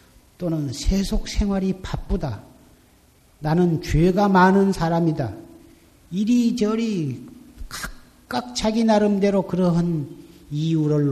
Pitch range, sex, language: 125-170 Hz, male, Korean